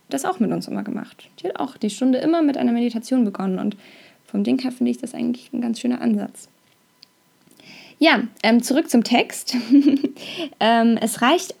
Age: 10-29